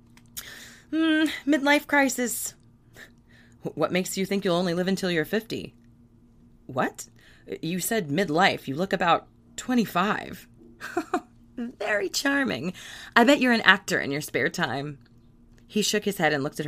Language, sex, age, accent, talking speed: English, female, 30-49, American, 140 wpm